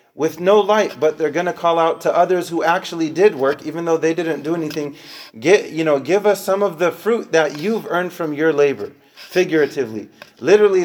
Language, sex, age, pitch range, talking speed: English, male, 30-49, 120-160 Hz, 210 wpm